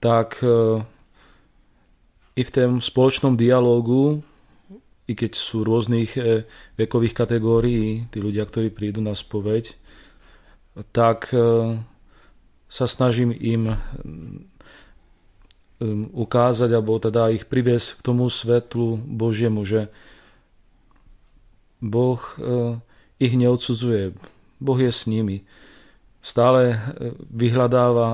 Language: Slovak